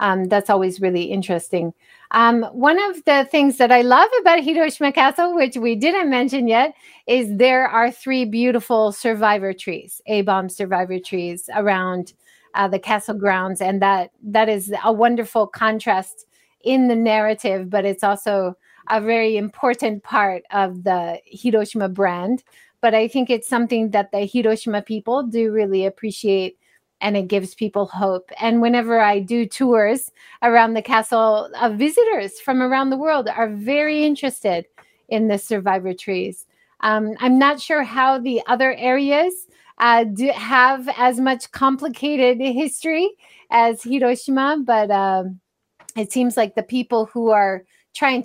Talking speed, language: 150 wpm, English